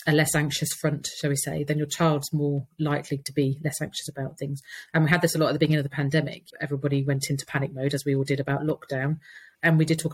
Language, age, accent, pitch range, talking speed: English, 30-49, British, 145-160 Hz, 265 wpm